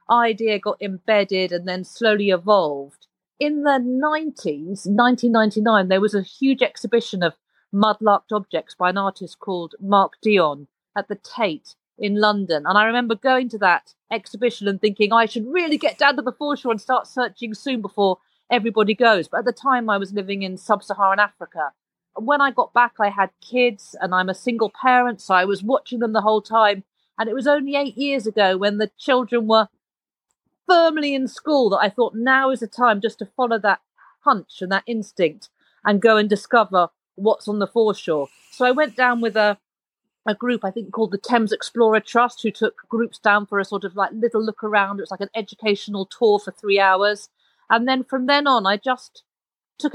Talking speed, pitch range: 200 wpm, 200-245 Hz